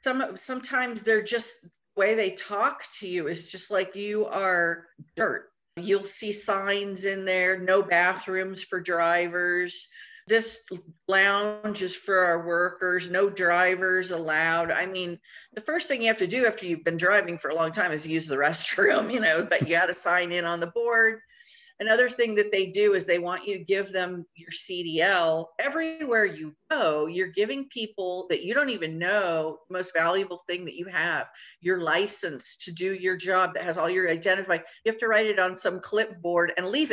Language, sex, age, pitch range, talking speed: English, female, 40-59, 175-220 Hz, 190 wpm